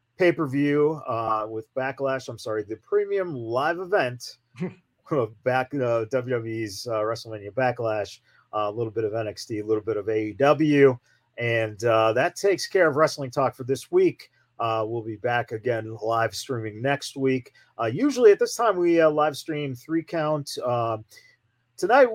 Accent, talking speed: American, 155 wpm